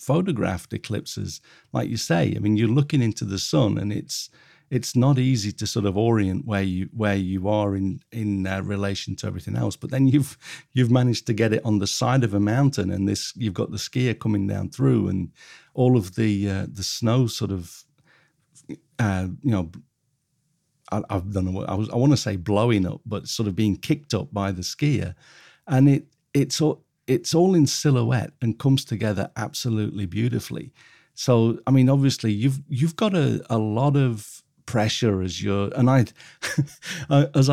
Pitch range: 100-135 Hz